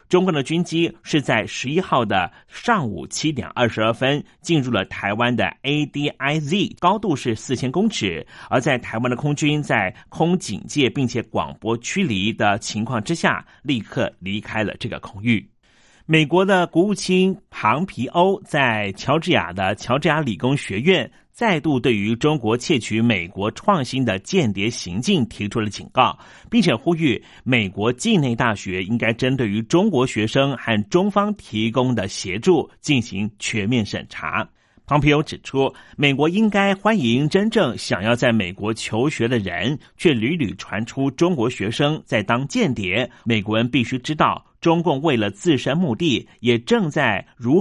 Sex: male